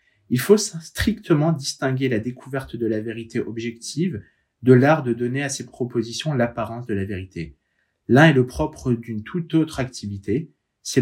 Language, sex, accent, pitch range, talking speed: French, male, French, 115-145 Hz, 165 wpm